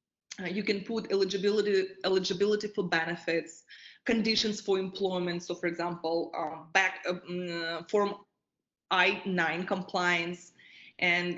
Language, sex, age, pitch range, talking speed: English, female, 20-39, 175-205 Hz, 115 wpm